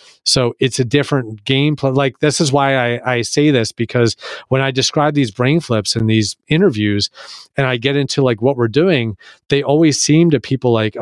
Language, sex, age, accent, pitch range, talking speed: English, male, 40-59, American, 110-140 Hz, 200 wpm